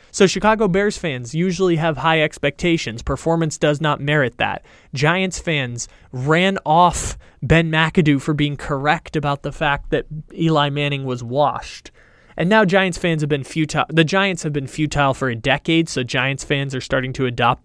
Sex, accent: male, American